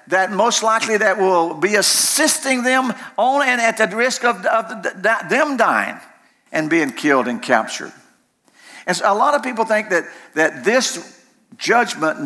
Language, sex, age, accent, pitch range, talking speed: English, male, 50-69, American, 165-250 Hz, 160 wpm